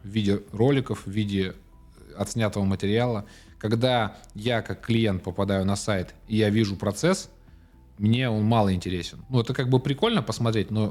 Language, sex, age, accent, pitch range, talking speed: Russian, male, 20-39, native, 95-115 Hz, 160 wpm